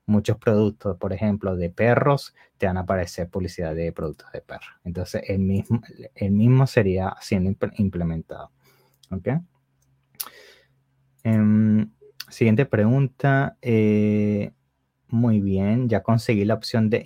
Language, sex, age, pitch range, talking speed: English, male, 20-39, 95-115 Hz, 125 wpm